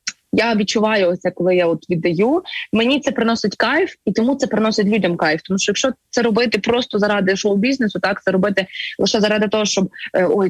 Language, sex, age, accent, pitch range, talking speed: Ukrainian, female, 20-39, native, 185-235 Hz, 190 wpm